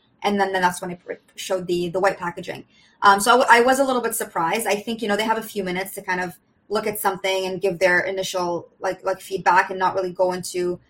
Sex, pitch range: female, 180-205 Hz